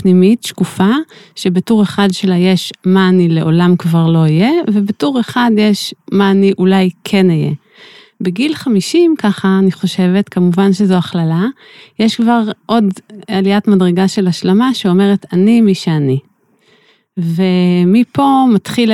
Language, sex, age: Hebrew, female, 30-49